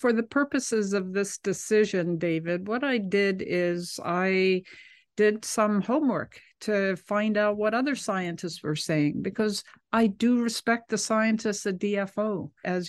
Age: 60-79